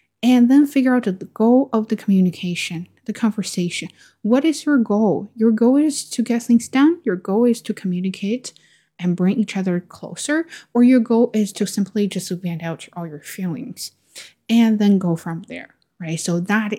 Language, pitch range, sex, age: Chinese, 180-225 Hz, female, 20-39